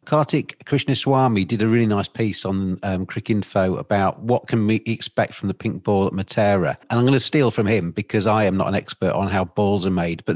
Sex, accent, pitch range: male, British, 105-130 Hz